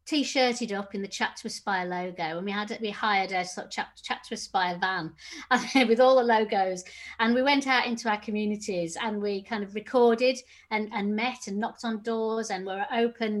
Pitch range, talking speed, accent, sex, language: 190-225 Hz, 200 wpm, British, female, English